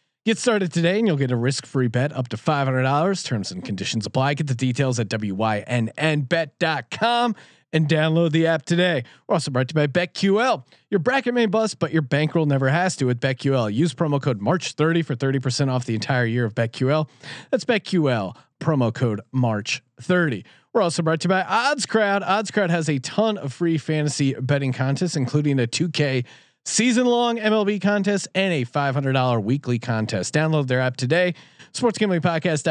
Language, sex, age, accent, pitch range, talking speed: English, male, 30-49, American, 130-180 Hz, 185 wpm